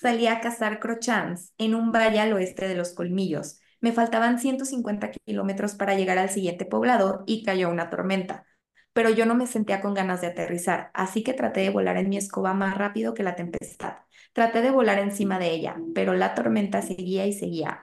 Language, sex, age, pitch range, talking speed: Spanish, female, 20-39, 185-230 Hz, 200 wpm